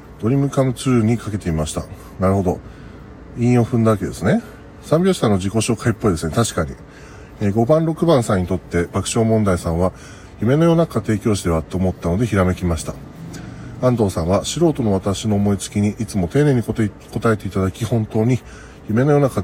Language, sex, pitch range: Japanese, male, 90-125 Hz